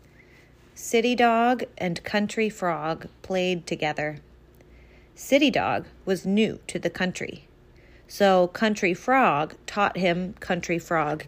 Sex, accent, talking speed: female, American, 110 wpm